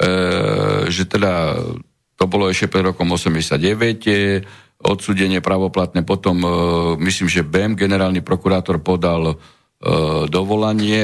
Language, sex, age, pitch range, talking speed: Slovak, male, 50-69, 85-110 Hz, 100 wpm